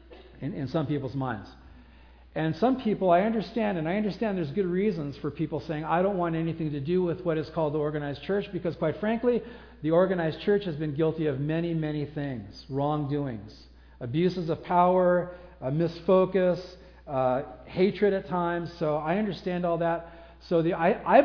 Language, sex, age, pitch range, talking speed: English, male, 50-69, 145-190 Hz, 170 wpm